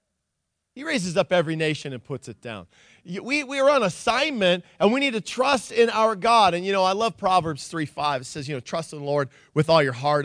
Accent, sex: American, male